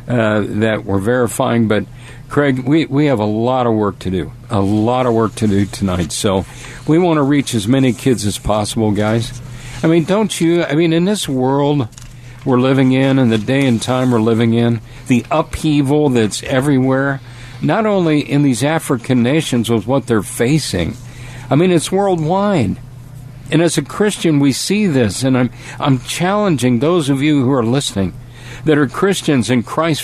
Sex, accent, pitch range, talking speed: male, American, 120-145 Hz, 185 wpm